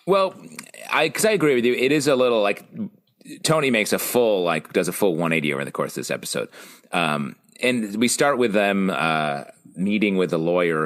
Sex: male